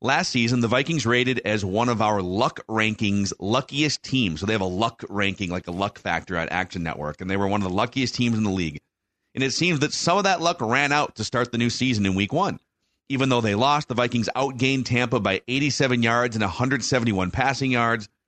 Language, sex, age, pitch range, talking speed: English, male, 40-59, 100-130 Hz, 230 wpm